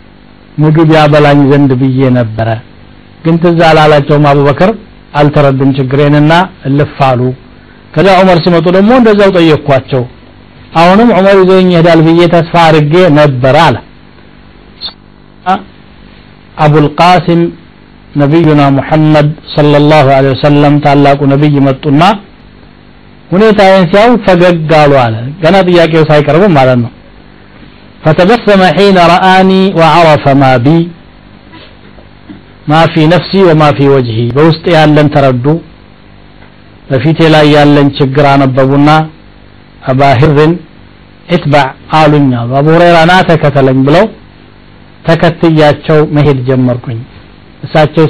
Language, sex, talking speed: Amharic, male, 95 wpm